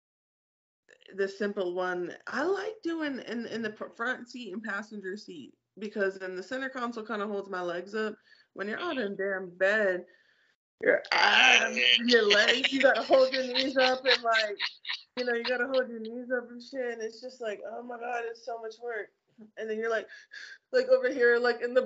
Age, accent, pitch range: 20-39, American, 195-240 Hz